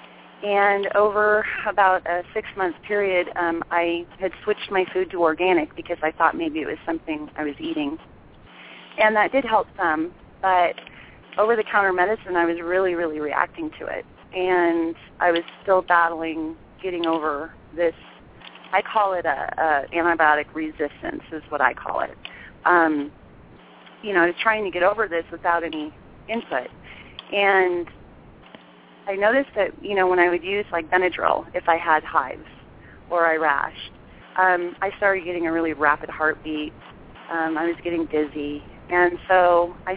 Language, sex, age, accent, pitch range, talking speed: English, female, 30-49, American, 165-195 Hz, 160 wpm